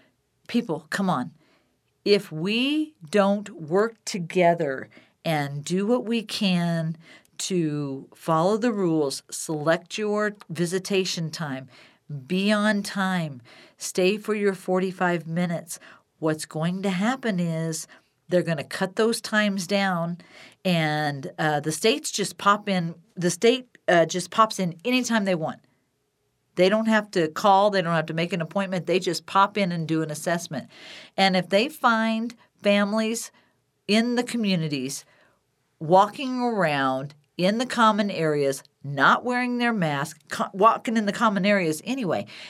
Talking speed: 145 wpm